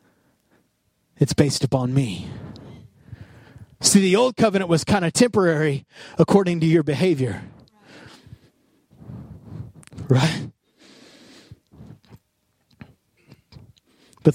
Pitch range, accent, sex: 145-185 Hz, American, male